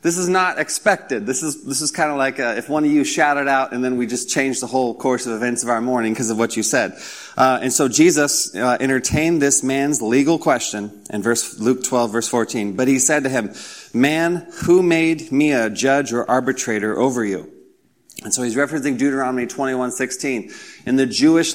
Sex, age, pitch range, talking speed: male, 30-49, 120-140 Hz, 210 wpm